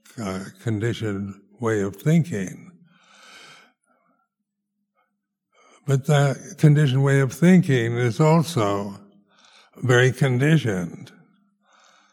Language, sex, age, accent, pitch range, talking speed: English, male, 60-79, American, 115-180 Hz, 75 wpm